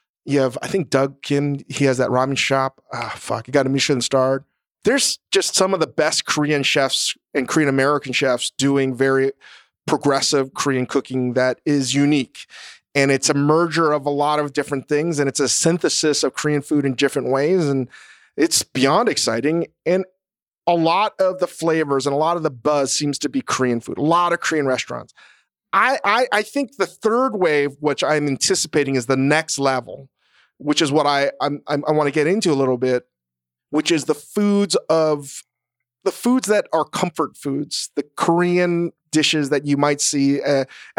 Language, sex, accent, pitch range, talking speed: English, male, American, 135-155 Hz, 195 wpm